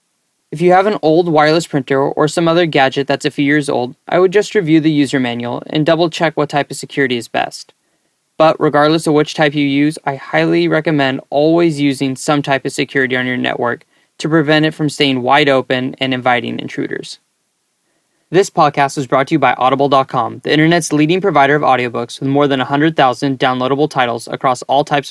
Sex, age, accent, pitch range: male, 10-29, American, 135-160 Hz